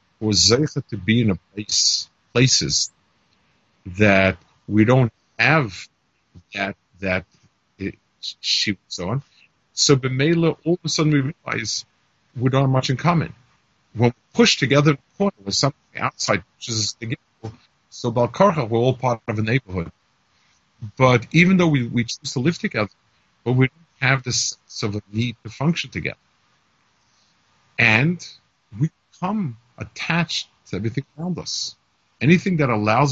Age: 50-69